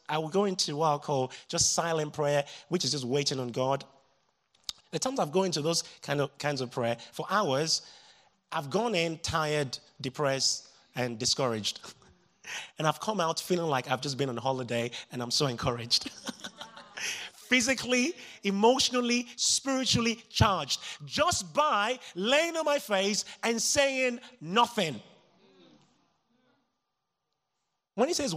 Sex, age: male, 30-49